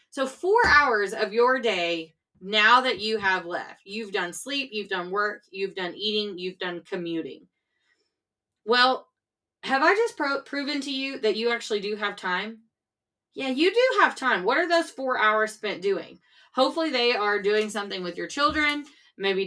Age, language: 20-39, English